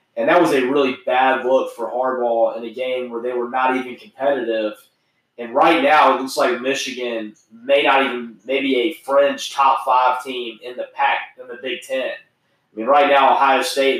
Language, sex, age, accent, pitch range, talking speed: English, male, 20-39, American, 120-135 Hz, 200 wpm